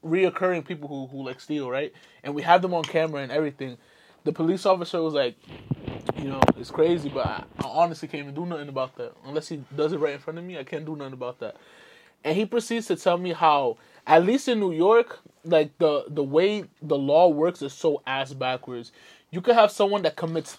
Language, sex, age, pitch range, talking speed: English, male, 20-39, 145-185 Hz, 225 wpm